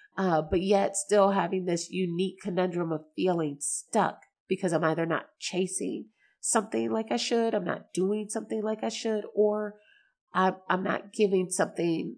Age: 30-49